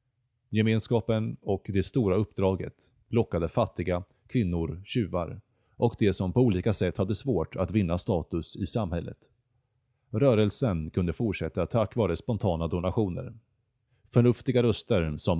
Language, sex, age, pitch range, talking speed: Swedish, male, 30-49, 90-120 Hz, 125 wpm